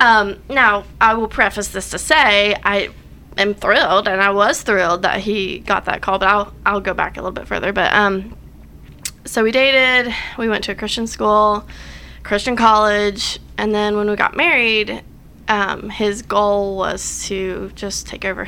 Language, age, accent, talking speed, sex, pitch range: English, 20-39, American, 180 wpm, female, 195-225 Hz